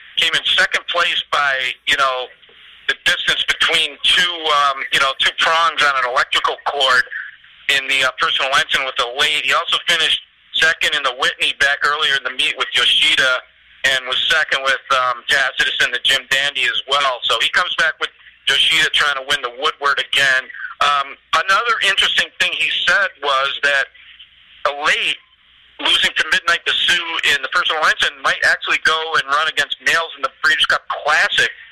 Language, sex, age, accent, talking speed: English, male, 40-59, American, 185 wpm